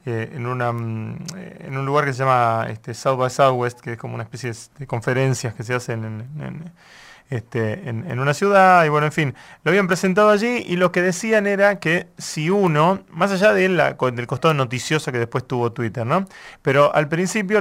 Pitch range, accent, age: 130-175 Hz, Argentinian, 30-49